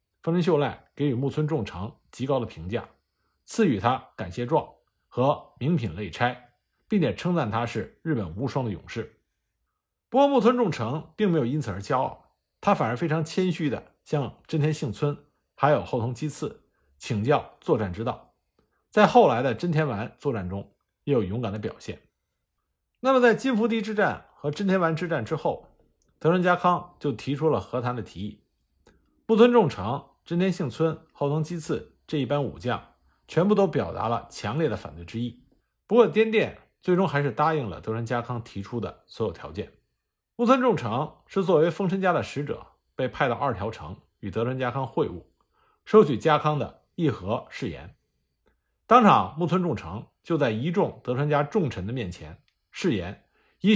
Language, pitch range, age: Chinese, 115-180 Hz, 50-69